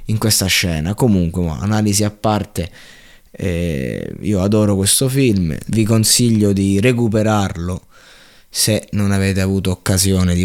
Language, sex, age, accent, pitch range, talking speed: Italian, male, 20-39, native, 95-110 Hz, 125 wpm